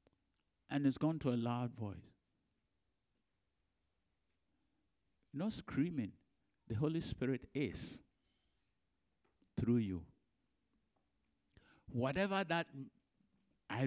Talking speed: 80 wpm